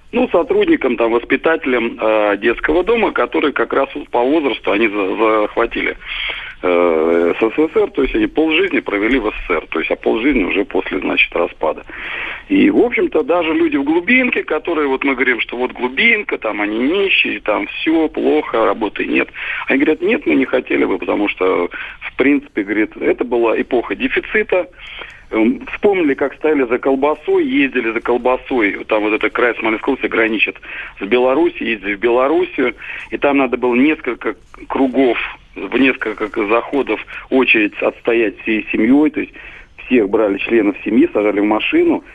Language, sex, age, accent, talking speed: Russian, male, 40-59, native, 160 wpm